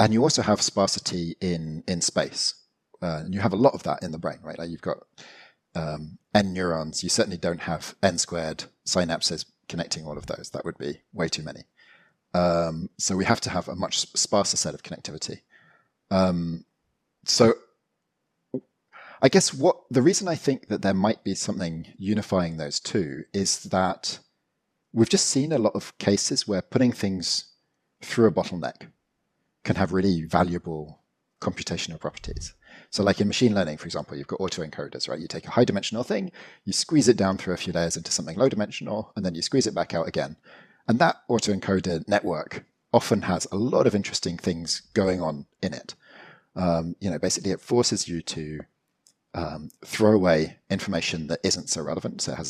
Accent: British